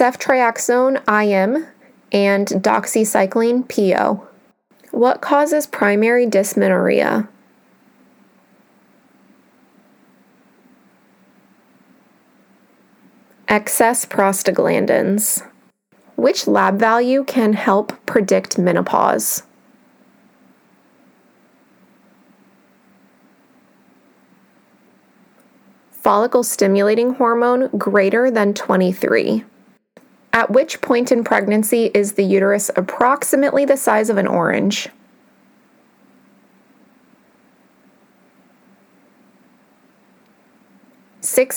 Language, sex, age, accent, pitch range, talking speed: English, female, 20-39, American, 200-250 Hz, 55 wpm